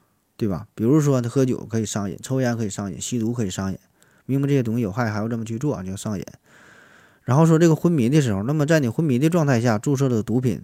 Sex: male